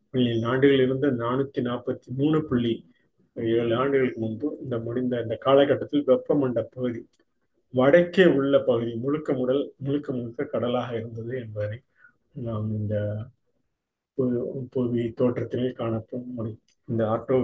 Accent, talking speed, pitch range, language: native, 105 wpm, 115-140 Hz, Tamil